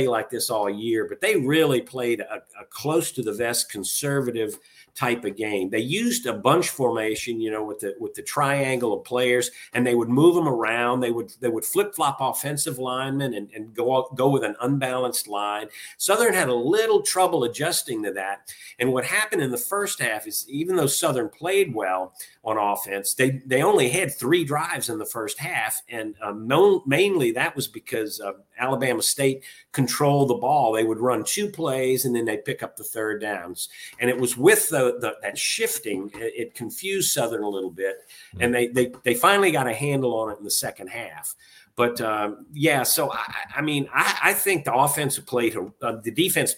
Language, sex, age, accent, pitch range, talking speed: English, male, 50-69, American, 115-155 Hz, 205 wpm